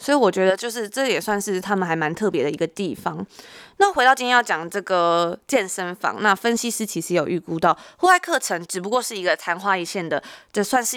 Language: Chinese